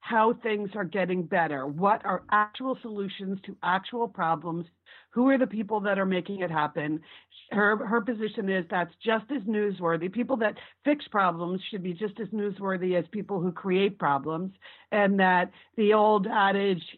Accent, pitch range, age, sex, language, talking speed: American, 180-245 Hz, 40-59, female, English, 170 wpm